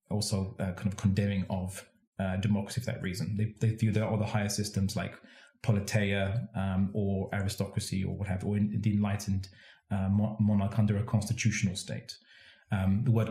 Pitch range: 105-120 Hz